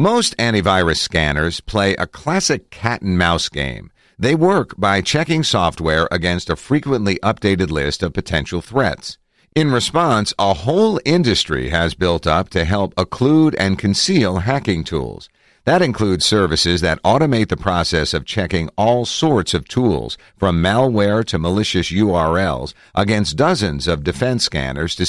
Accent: American